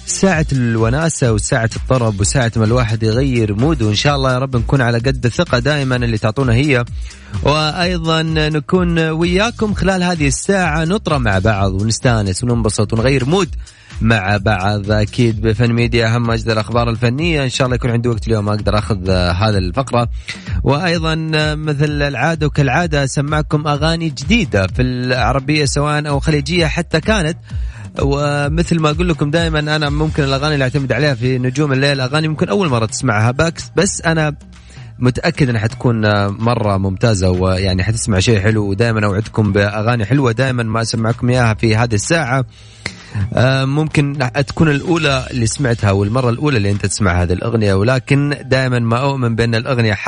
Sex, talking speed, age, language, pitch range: male, 155 wpm, 30-49, Arabic, 110-150 Hz